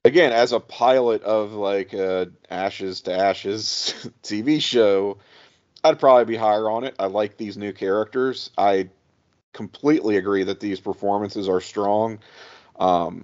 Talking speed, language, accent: 145 wpm, English, American